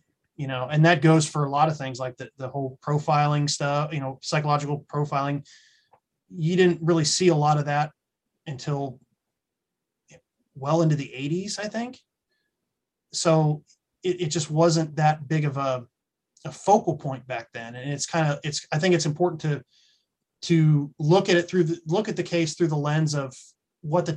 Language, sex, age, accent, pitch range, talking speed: English, male, 20-39, American, 140-165 Hz, 185 wpm